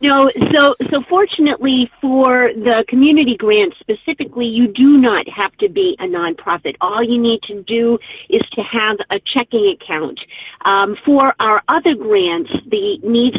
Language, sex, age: English, female, 50-69